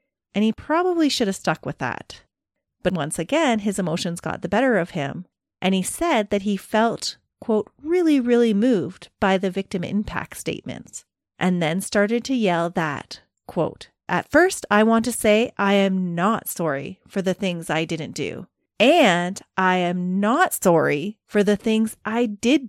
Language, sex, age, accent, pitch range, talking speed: English, female, 30-49, American, 170-225 Hz, 175 wpm